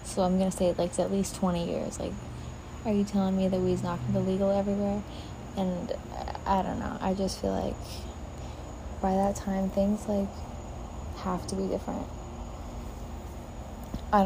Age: 20-39